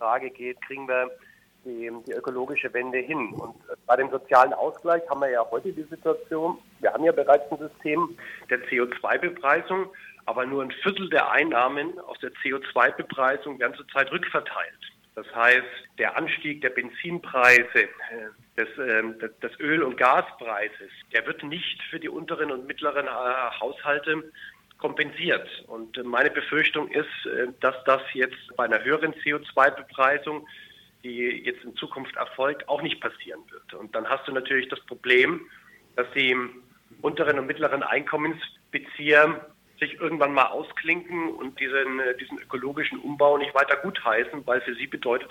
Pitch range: 130-160 Hz